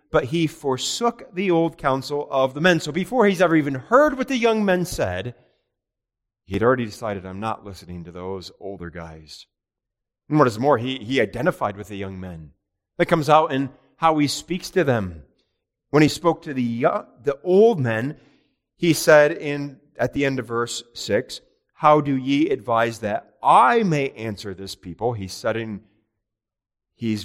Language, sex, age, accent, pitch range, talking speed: English, male, 30-49, American, 105-150 Hz, 180 wpm